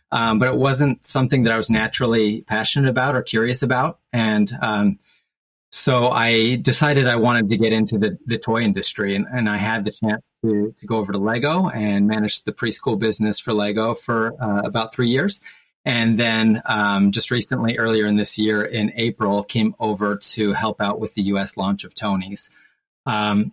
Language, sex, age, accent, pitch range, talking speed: English, male, 30-49, American, 110-130 Hz, 190 wpm